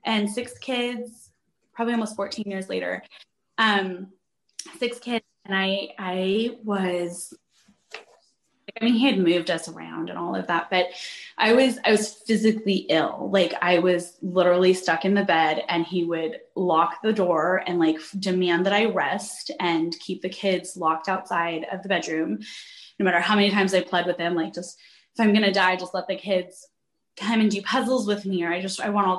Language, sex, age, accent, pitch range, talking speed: English, female, 20-39, American, 175-210 Hz, 195 wpm